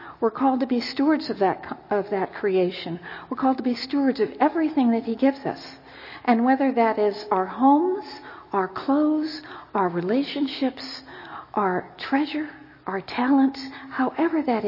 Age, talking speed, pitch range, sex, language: 50-69, 150 wpm, 205-270 Hz, female, English